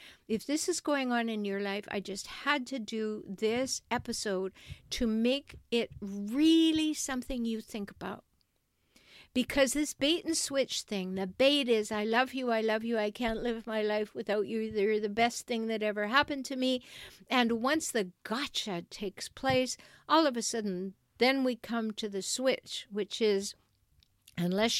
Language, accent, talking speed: English, American, 175 wpm